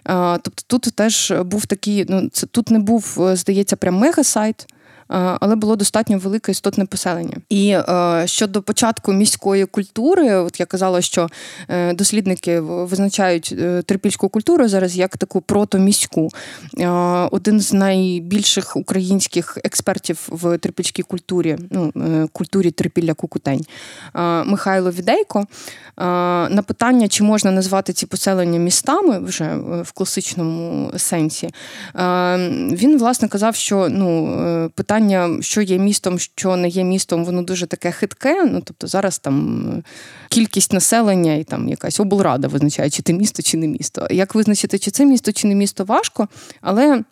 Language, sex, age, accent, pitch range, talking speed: Ukrainian, female, 20-39, native, 180-215 Hz, 130 wpm